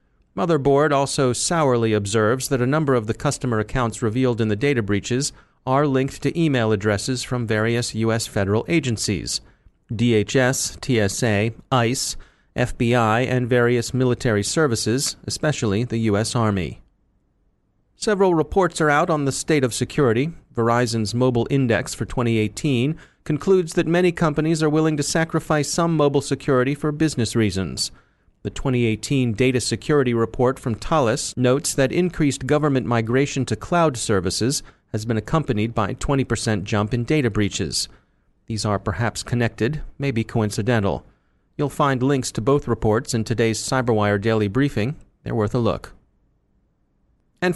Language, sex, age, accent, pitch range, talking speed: English, male, 30-49, American, 110-145 Hz, 140 wpm